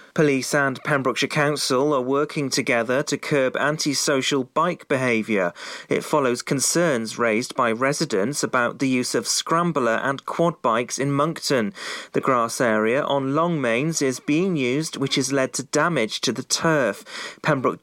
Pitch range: 125-155 Hz